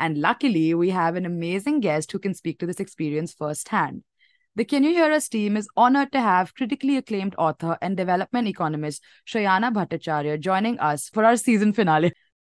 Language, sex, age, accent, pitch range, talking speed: English, female, 20-39, Indian, 165-245 Hz, 185 wpm